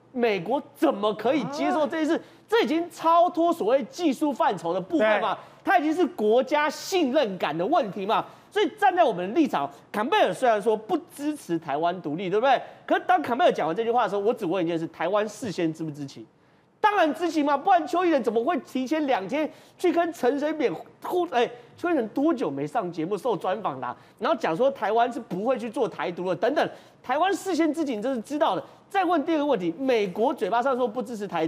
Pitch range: 210-325 Hz